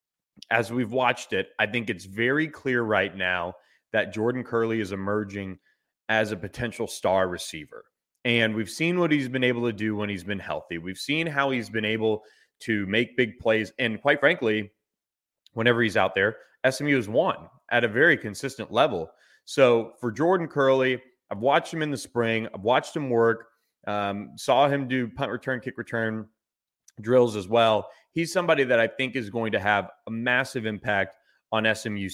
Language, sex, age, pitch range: English, male, 30-49, 105-130 Hz